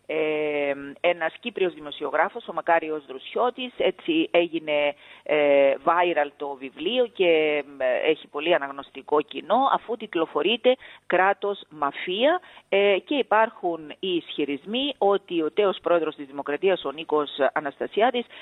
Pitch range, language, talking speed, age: 150-225 Hz, Greek, 120 wpm, 40-59